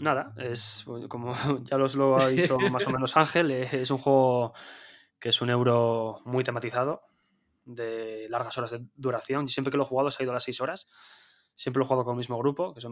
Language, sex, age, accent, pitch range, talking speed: Spanish, male, 20-39, Spanish, 120-140 Hz, 230 wpm